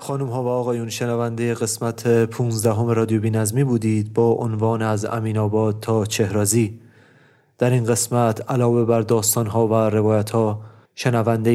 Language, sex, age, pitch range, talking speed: Persian, male, 30-49, 110-125 Hz, 145 wpm